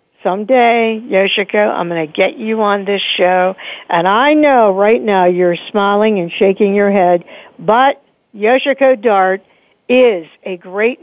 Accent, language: American, English